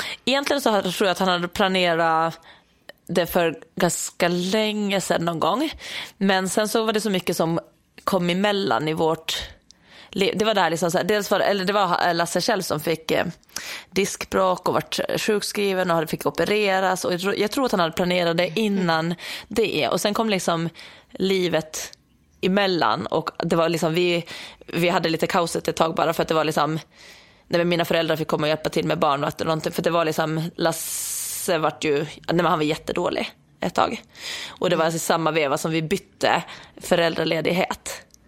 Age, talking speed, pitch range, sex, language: 30-49, 180 wpm, 165-195 Hz, female, Swedish